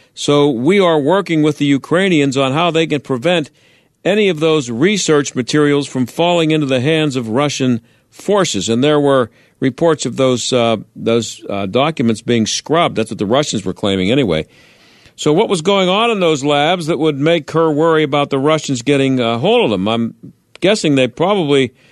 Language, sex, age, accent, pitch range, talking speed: English, male, 50-69, American, 135-170 Hz, 190 wpm